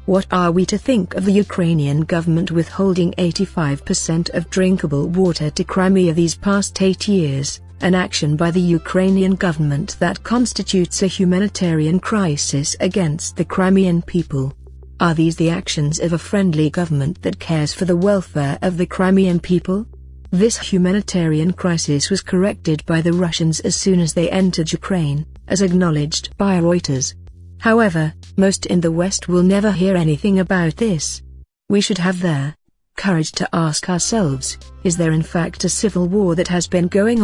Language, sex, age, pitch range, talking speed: English, female, 40-59, 160-190 Hz, 160 wpm